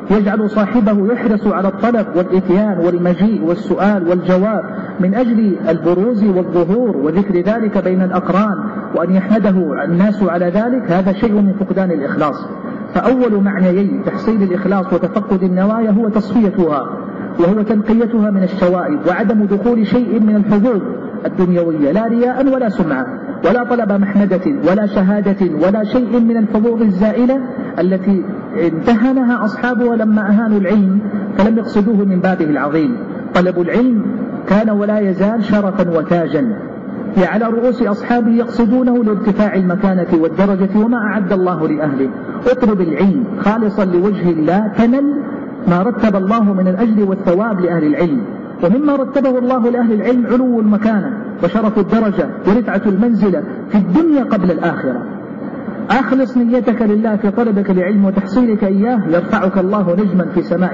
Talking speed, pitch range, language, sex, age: 130 wpm, 185-235 Hz, Arabic, male, 50-69